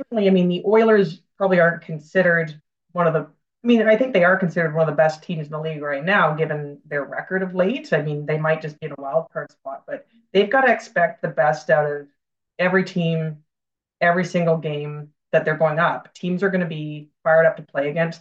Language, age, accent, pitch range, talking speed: English, 30-49, American, 150-180 Hz, 235 wpm